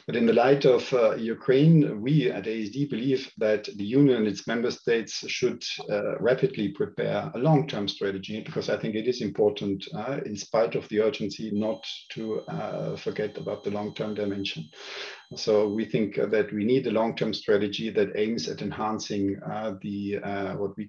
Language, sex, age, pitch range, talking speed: English, male, 50-69, 100-135 Hz, 180 wpm